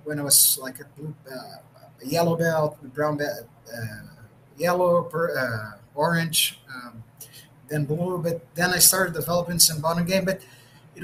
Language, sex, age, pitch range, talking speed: English, male, 30-49, 140-185 Hz, 170 wpm